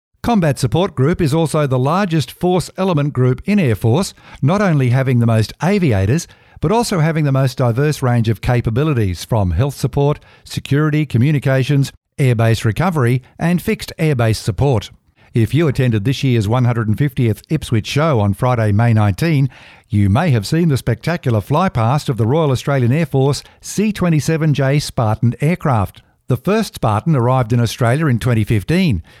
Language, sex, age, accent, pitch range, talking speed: English, male, 50-69, Australian, 120-155 Hz, 155 wpm